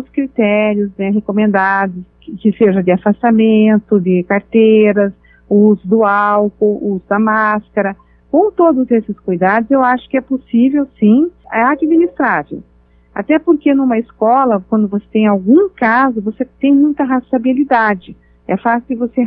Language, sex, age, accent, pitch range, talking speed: Portuguese, female, 50-69, Brazilian, 210-255 Hz, 140 wpm